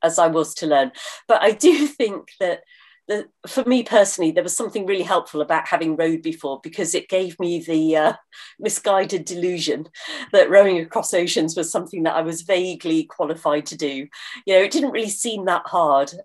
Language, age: English, 40-59